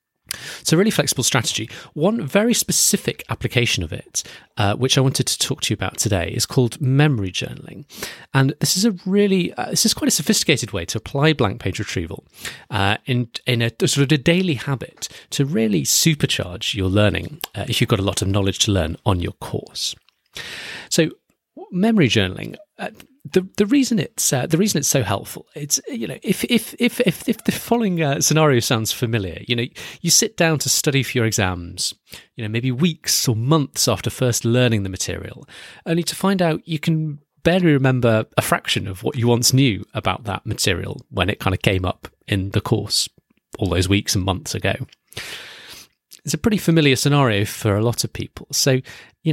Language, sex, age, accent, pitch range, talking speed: English, male, 30-49, British, 110-165 Hz, 200 wpm